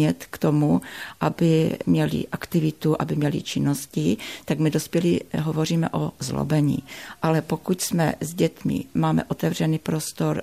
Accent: native